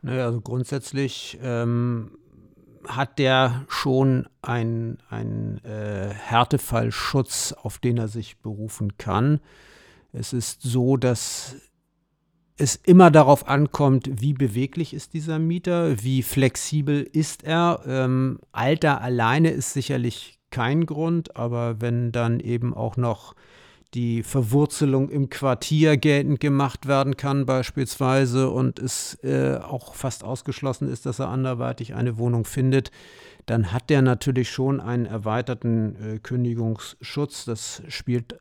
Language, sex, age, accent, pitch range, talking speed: German, male, 50-69, German, 115-140 Hz, 120 wpm